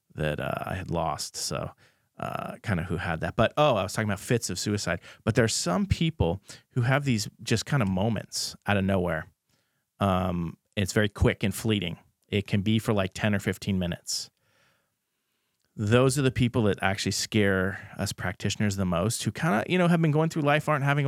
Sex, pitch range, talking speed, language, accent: male, 95-120 Hz, 210 wpm, English, American